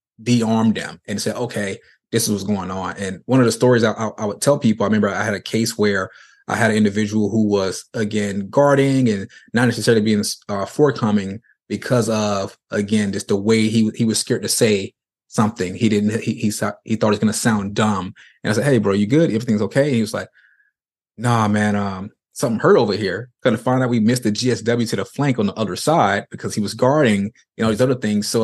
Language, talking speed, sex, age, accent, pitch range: English, 230 wpm, male, 20-39, American, 105-120 Hz